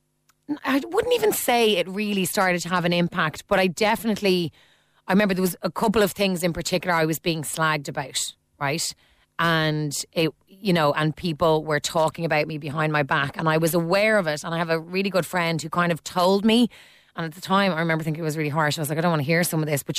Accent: Irish